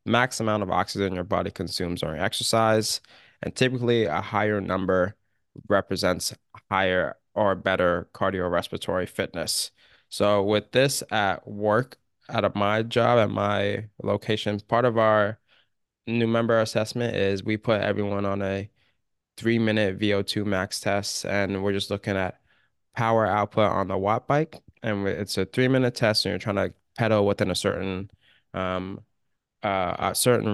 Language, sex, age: English, male, 20-39